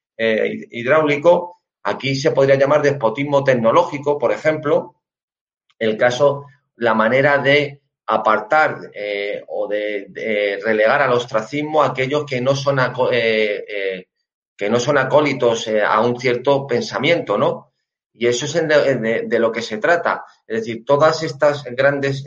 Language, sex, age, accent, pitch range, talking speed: Spanish, male, 30-49, Spanish, 120-150 Hz, 130 wpm